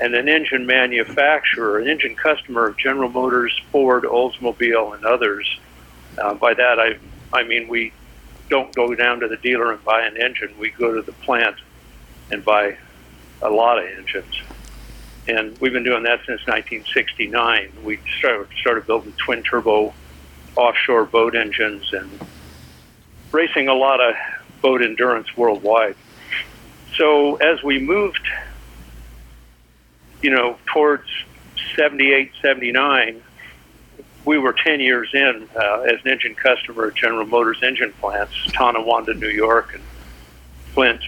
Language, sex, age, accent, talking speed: English, male, 60-79, American, 140 wpm